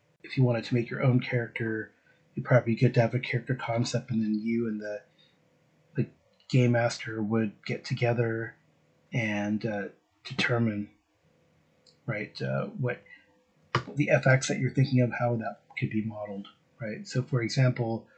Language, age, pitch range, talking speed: English, 30-49, 115-140 Hz, 160 wpm